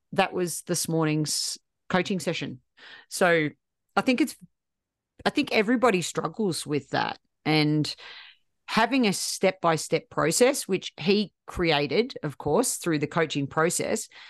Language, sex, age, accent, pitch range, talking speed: English, female, 40-59, Australian, 155-210 Hz, 135 wpm